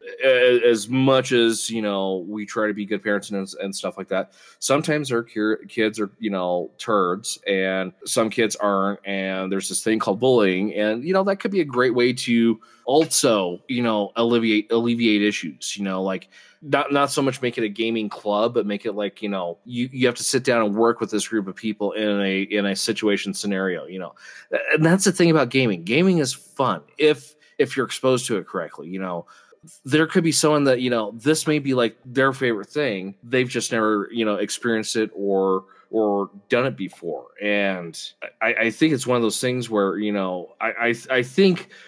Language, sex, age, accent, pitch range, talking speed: English, male, 20-39, American, 100-125 Hz, 210 wpm